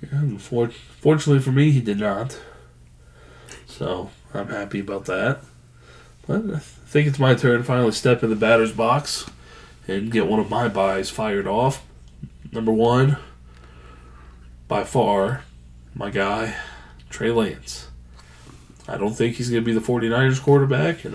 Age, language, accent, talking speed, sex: 20-39, English, American, 155 wpm, male